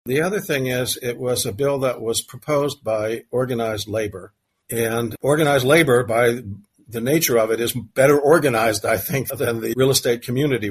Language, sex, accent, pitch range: English, male, American, 105-125 Hz